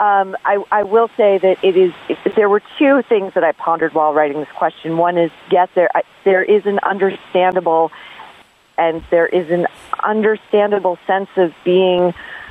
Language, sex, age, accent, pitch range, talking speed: English, female, 40-59, American, 160-195 Hz, 170 wpm